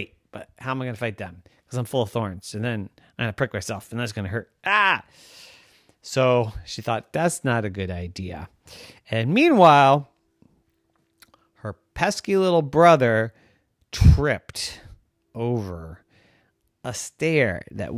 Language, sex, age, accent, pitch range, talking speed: English, male, 30-49, American, 105-170 Hz, 150 wpm